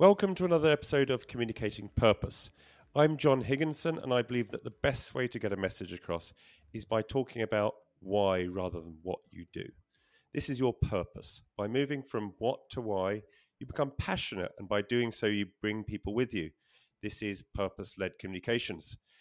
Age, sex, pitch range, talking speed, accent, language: 40-59, male, 100-130 Hz, 180 wpm, British, English